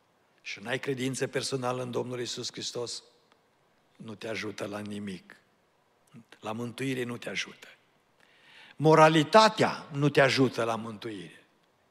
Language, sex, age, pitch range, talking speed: Romanian, male, 60-79, 120-155 Hz, 125 wpm